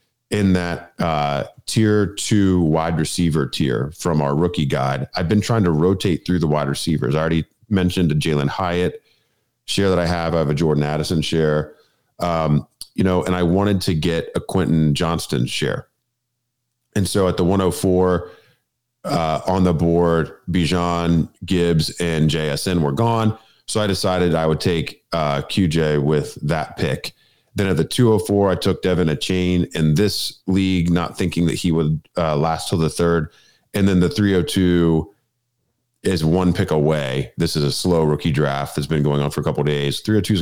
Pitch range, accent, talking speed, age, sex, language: 80-95 Hz, American, 180 wpm, 40-59, male, English